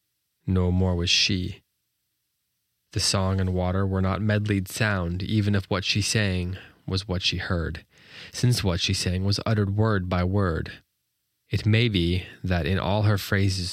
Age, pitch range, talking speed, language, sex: 20-39, 90-105 Hz, 165 wpm, English, male